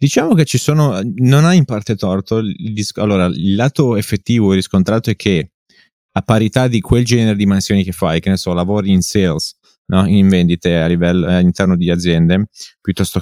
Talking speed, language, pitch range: 200 wpm, Italian, 90-110 Hz